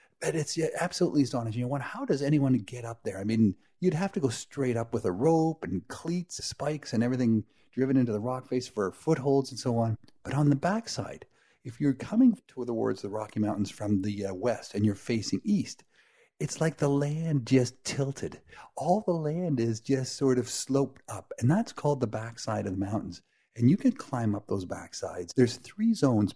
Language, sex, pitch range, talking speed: English, male, 110-145 Hz, 200 wpm